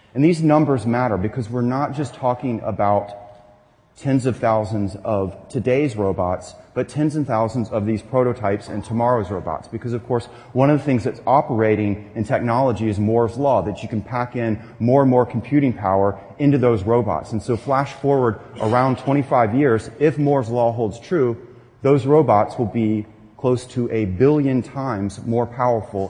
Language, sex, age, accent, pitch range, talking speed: English, male, 30-49, American, 110-135 Hz, 175 wpm